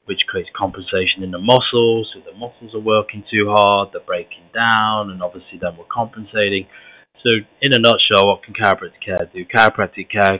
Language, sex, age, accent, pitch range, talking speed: English, male, 20-39, British, 95-115 Hz, 185 wpm